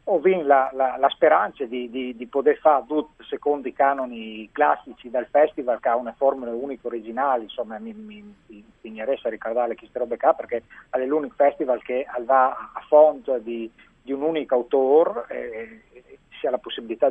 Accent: native